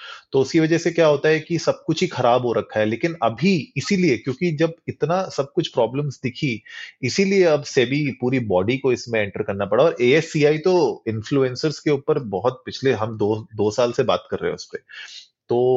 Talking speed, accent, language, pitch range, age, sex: 210 wpm, native, Hindi, 115-160 Hz, 30-49, male